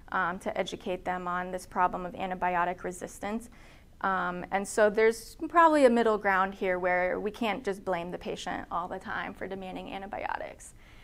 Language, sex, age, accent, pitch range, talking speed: English, female, 20-39, American, 190-230 Hz, 175 wpm